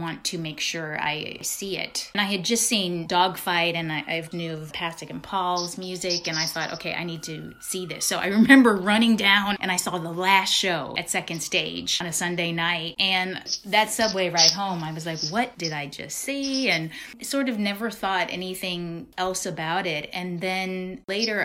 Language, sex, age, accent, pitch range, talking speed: English, female, 30-49, American, 165-205 Hz, 210 wpm